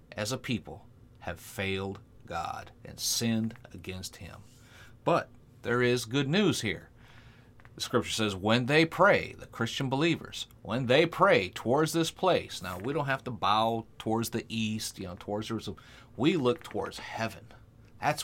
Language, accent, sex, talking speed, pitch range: English, American, male, 160 wpm, 110-135 Hz